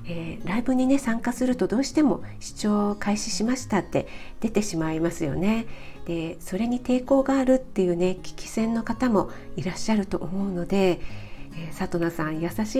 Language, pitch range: Japanese, 175-225 Hz